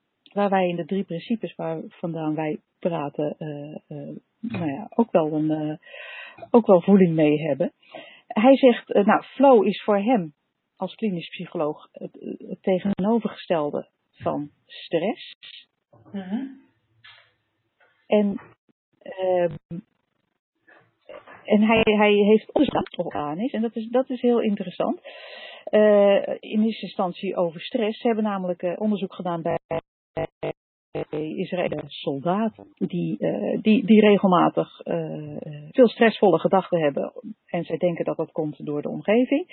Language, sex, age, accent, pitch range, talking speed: Dutch, female, 40-59, Dutch, 175-245 Hz, 135 wpm